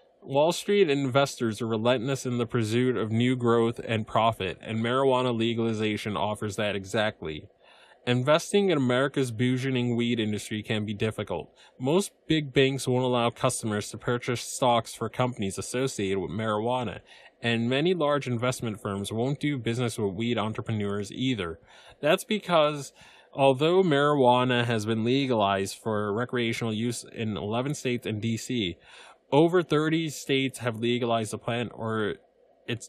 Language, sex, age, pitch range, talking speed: English, male, 20-39, 110-135 Hz, 140 wpm